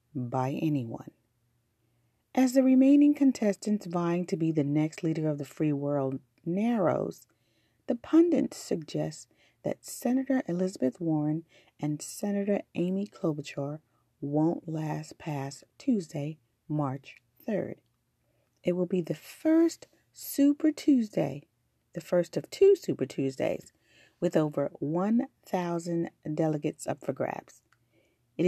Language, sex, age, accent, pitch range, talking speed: English, female, 40-59, American, 135-190 Hz, 115 wpm